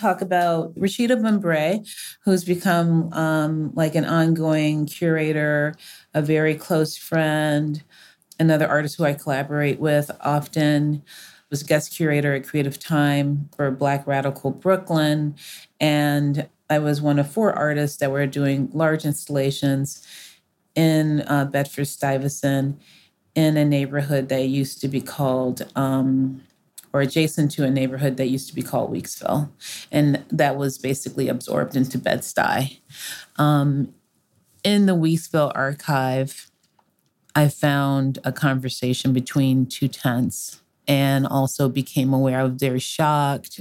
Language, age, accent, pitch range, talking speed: English, 40-59, American, 135-155 Hz, 130 wpm